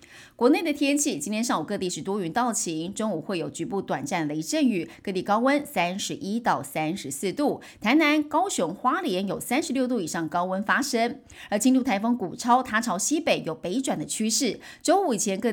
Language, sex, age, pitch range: Chinese, female, 30-49, 185-270 Hz